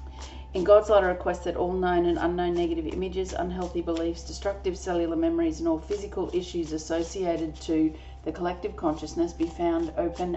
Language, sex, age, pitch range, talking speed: English, female, 40-59, 155-230 Hz, 170 wpm